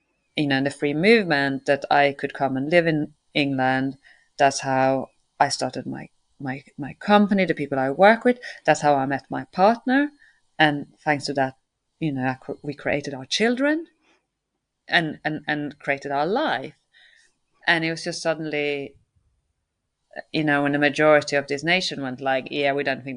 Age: 30-49